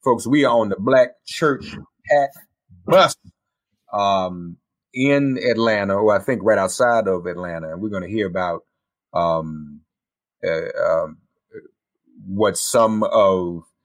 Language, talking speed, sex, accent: English, 135 wpm, male, American